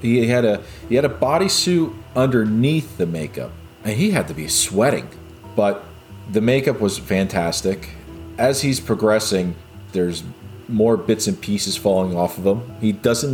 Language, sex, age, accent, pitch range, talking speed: English, male, 40-59, American, 90-110 Hz, 160 wpm